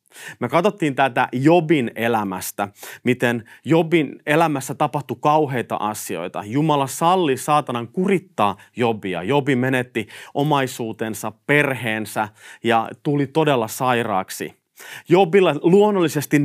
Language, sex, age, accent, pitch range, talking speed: Finnish, male, 30-49, native, 120-170 Hz, 95 wpm